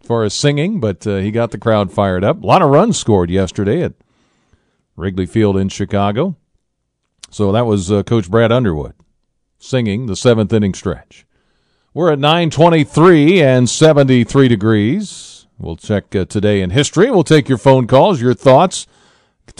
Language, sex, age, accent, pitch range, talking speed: English, male, 40-59, American, 100-125 Hz, 160 wpm